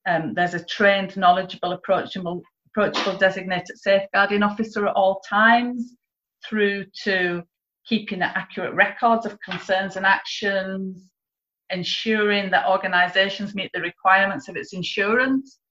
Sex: female